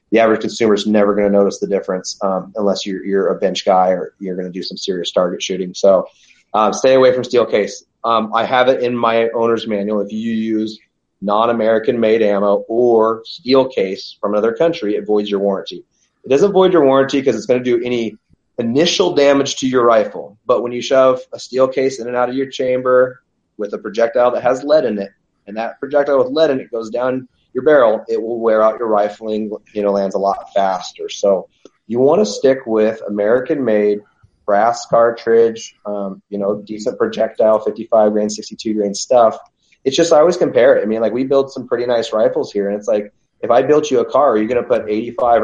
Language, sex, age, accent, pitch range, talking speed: English, male, 30-49, American, 105-135 Hz, 220 wpm